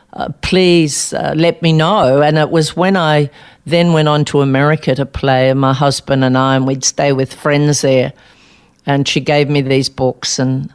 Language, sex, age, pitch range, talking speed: English, female, 50-69, 140-160 Hz, 200 wpm